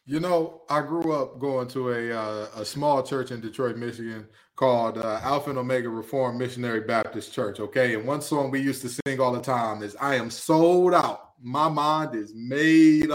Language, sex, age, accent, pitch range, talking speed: English, male, 20-39, American, 140-240 Hz, 200 wpm